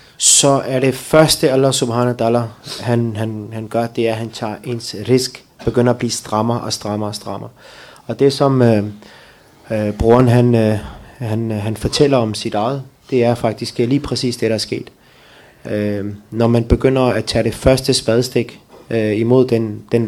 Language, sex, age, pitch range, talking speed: Danish, male, 30-49, 110-125 Hz, 180 wpm